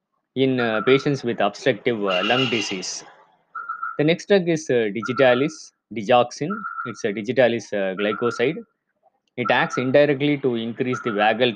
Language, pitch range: Tamil, 115-150 Hz